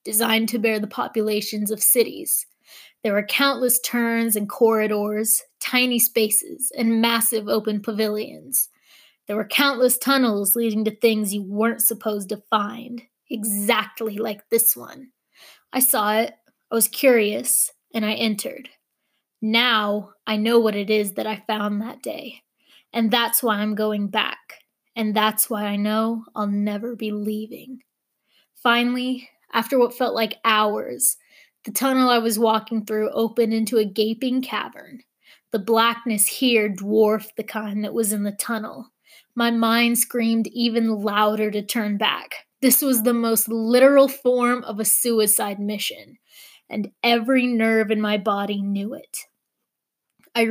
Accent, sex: American, female